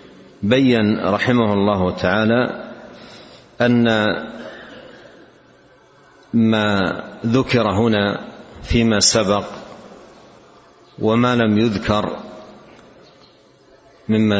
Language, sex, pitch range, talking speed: Arabic, male, 100-110 Hz, 60 wpm